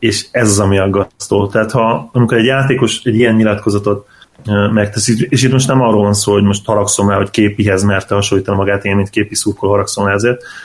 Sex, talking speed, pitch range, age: male, 210 wpm, 100-115 Hz, 30-49